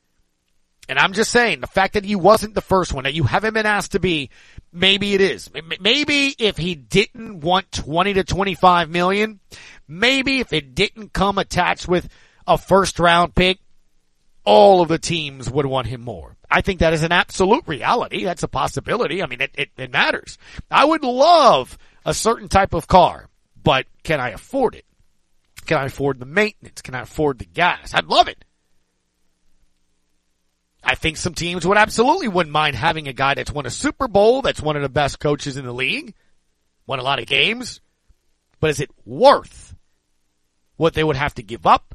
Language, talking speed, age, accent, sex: English, 190 wpm, 40-59, American, male